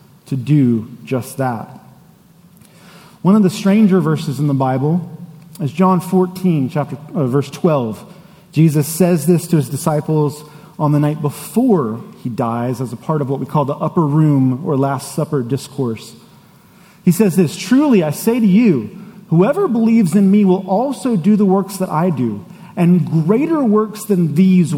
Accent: American